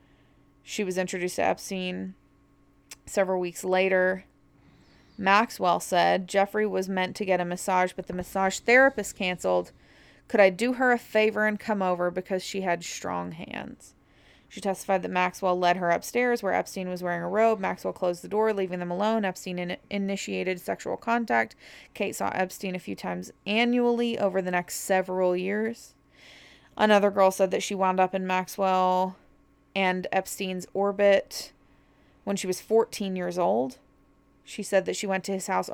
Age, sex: 20-39, female